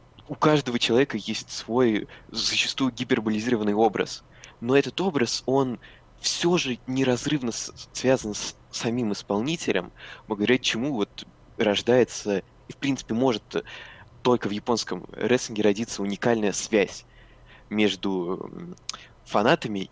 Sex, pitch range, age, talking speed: male, 105-130 Hz, 20-39, 105 wpm